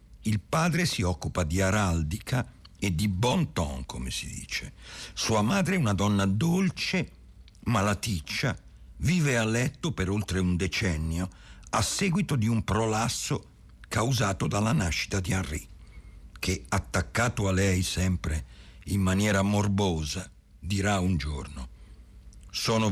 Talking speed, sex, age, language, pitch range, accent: 130 wpm, male, 60-79, Italian, 85-110 Hz, native